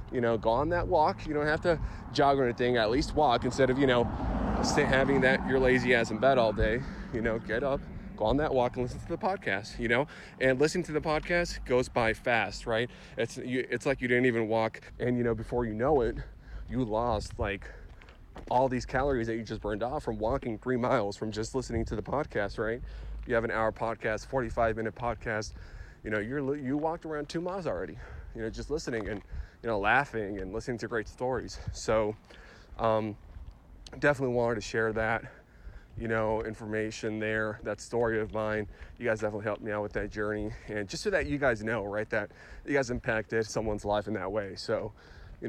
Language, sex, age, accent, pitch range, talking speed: English, male, 20-39, American, 110-130 Hz, 215 wpm